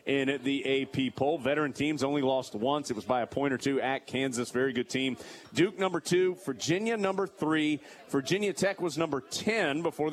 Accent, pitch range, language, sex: American, 135-175 Hz, English, male